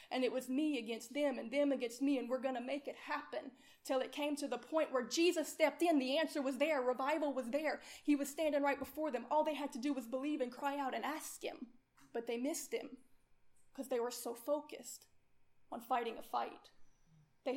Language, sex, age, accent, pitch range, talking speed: English, female, 20-39, American, 240-280 Hz, 230 wpm